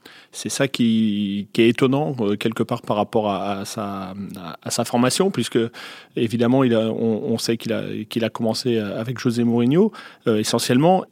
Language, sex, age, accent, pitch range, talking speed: French, male, 30-49, French, 105-125 Hz, 195 wpm